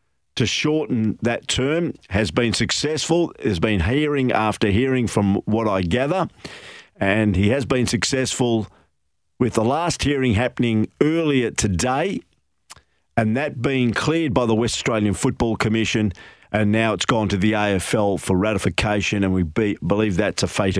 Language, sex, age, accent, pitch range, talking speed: English, male, 50-69, Australian, 100-125 Hz, 155 wpm